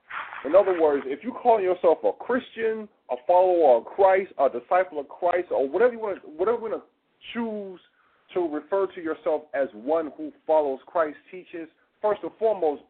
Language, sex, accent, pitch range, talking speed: English, male, American, 155-255 Hz, 185 wpm